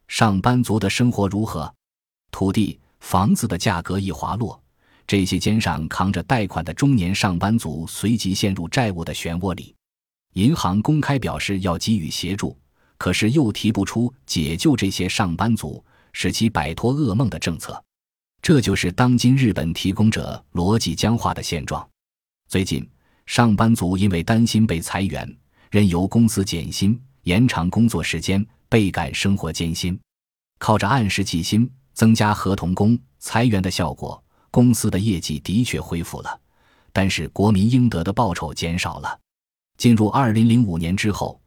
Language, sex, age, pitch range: Chinese, male, 20-39, 85-115 Hz